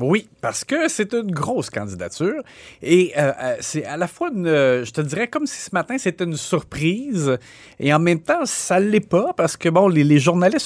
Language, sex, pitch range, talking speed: French, male, 125-165 Hz, 215 wpm